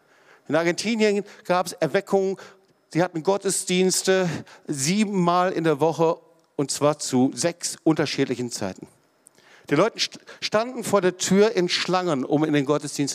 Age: 50-69